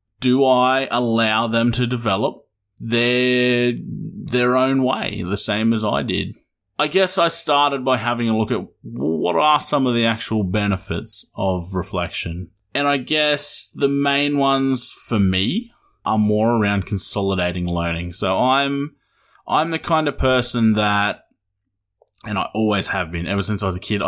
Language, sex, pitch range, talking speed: English, male, 95-120 Hz, 160 wpm